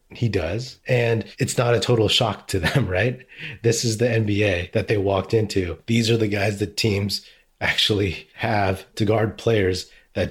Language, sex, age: English, male, 30-49